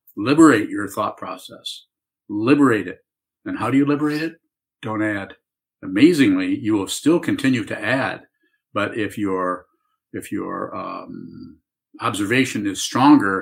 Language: English